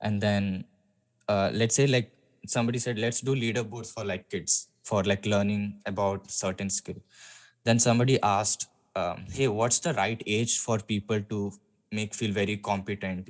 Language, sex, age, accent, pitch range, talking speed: English, male, 10-29, Indian, 100-115 Hz, 160 wpm